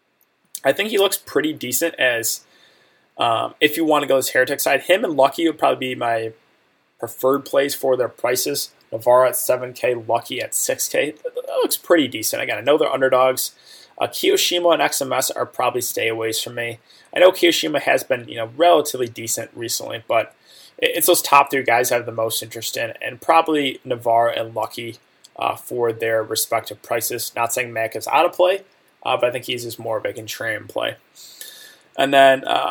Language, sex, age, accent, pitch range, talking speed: English, male, 20-39, American, 115-150 Hz, 195 wpm